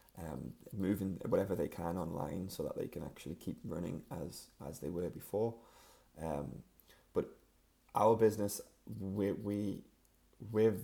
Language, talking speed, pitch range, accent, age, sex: English, 140 wpm, 85-110 Hz, British, 20-39, male